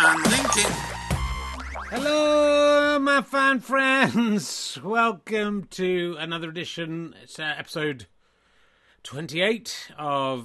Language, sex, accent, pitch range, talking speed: English, male, British, 140-215 Hz, 85 wpm